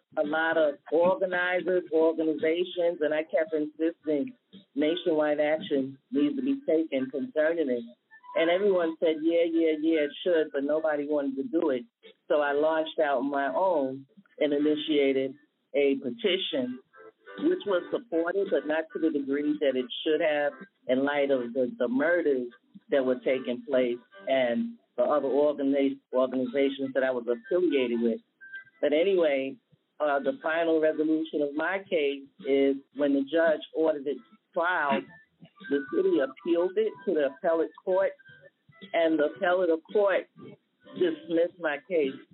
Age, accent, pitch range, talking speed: 40-59, American, 135-180 Hz, 150 wpm